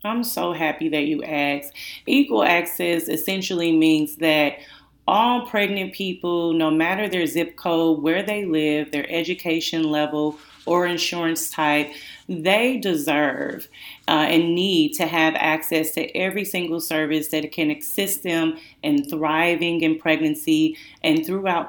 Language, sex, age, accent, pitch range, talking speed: English, female, 30-49, American, 160-190 Hz, 140 wpm